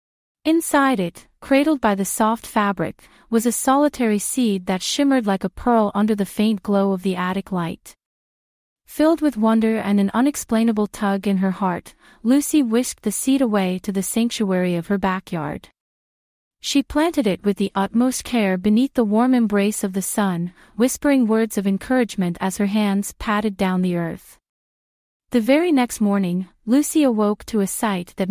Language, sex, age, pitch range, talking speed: English, female, 30-49, 195-245 Hz, 170 wpm